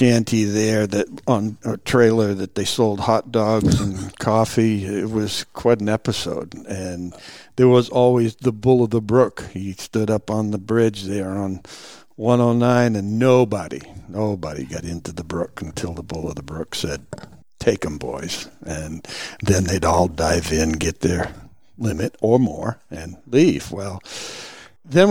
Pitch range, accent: 95-120 Hz, American